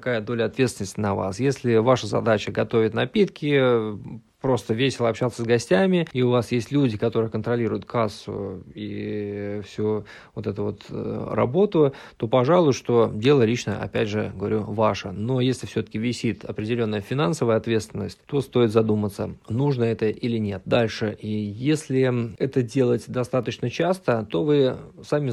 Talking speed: 145 wpm